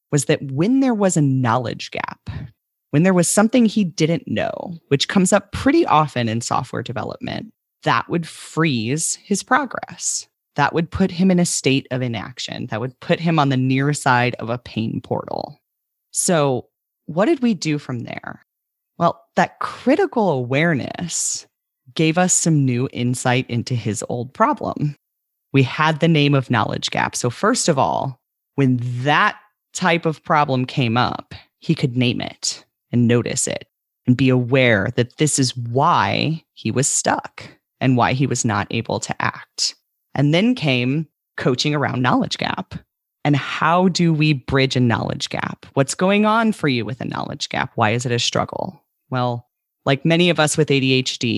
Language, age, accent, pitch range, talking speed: English, 30-49, American, 125-170 Hz, 175 wpm